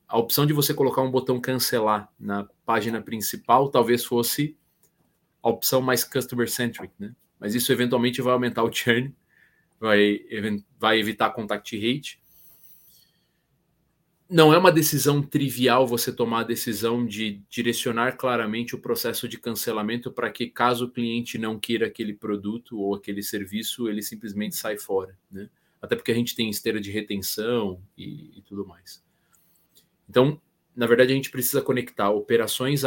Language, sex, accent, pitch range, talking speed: Portuguese, male, Brazilian, 105-130 Hz, 155 wpm